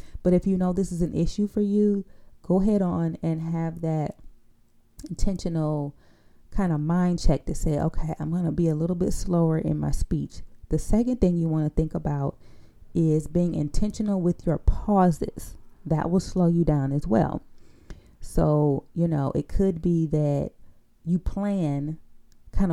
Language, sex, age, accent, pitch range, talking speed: English, female, 30-49, American, 150-185 Hz, 175 wpm